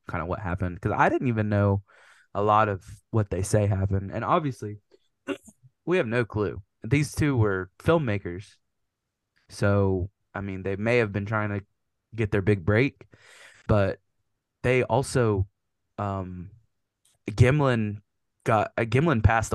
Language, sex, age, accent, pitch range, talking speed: English, male, 20-39, American, 100-115 Hz, 145 wpm